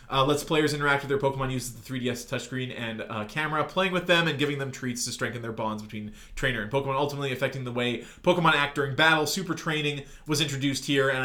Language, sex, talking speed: English, male, 230 wpm